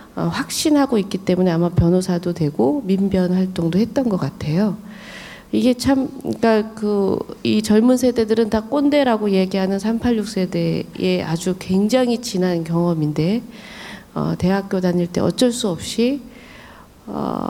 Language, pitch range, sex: Korean, 180-235 Hz, female